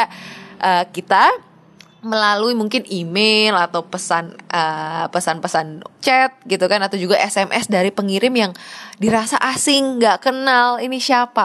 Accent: native